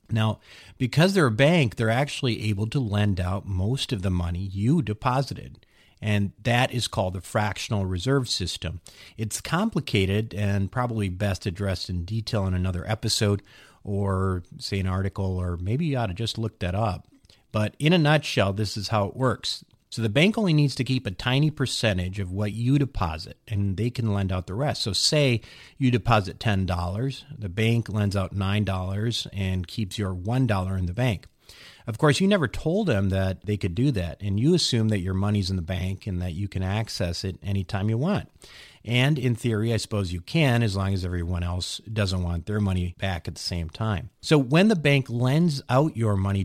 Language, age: English, 40-59